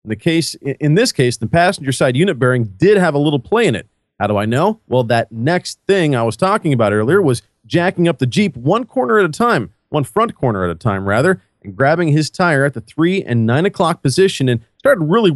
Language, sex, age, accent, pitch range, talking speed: English, male, 40-59, American, 125-185 Hz, 235 wpm